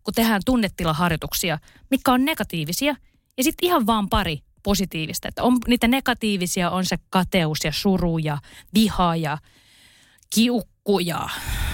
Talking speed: 125 wpm